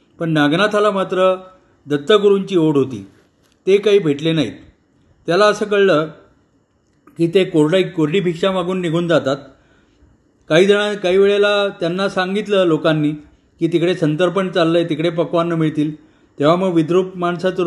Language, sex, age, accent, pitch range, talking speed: Marathi, male, 40-59, native, 155-185 Hz, 130 wpm